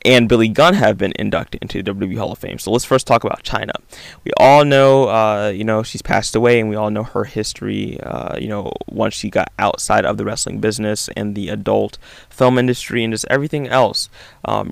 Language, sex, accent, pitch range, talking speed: English, male, American, 105-125 Hz, 220 wpm